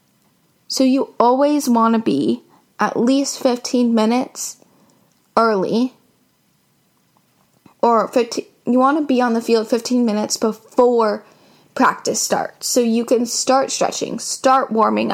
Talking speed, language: 125 wpm, English